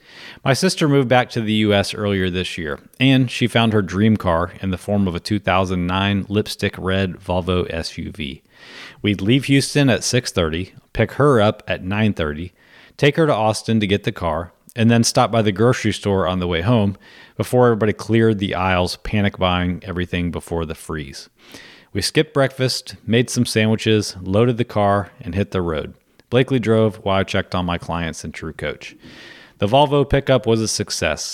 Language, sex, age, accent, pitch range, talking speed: English, male, 30-49, American, 95-115 Hz, 185 wpm